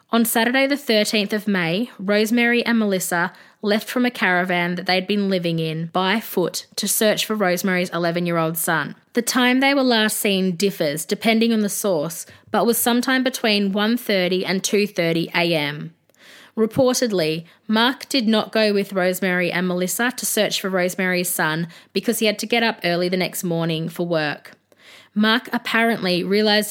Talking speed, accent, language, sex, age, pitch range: 165 wpm, Australian, English, female, 20-39, 175-220 Hz